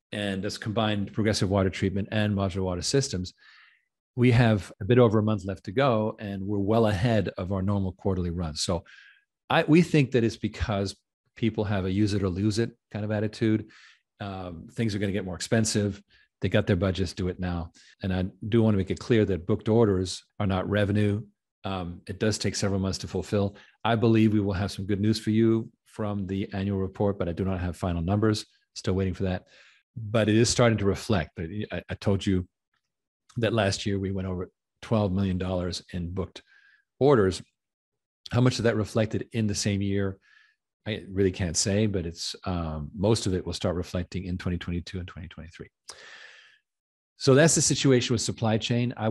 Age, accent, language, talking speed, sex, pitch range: 40-59, American, English, 195 wpm, male, 95-110 Hz